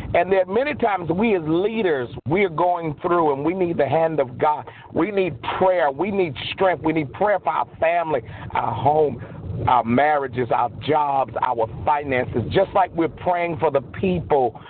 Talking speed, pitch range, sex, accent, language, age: 180 wpm, 130-160 Hz, male, American, English, 50-69